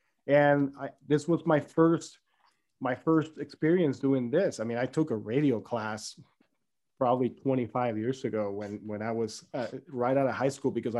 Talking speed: 180 wpm